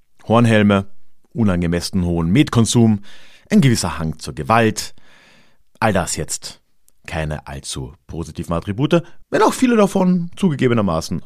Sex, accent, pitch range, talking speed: male, German, 85-125 Hz, 110 wpm